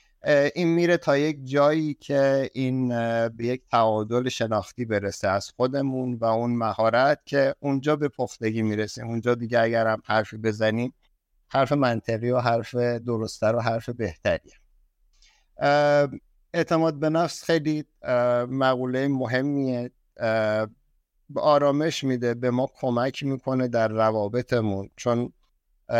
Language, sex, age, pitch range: Persian, male, 50-69, 110-130 Hz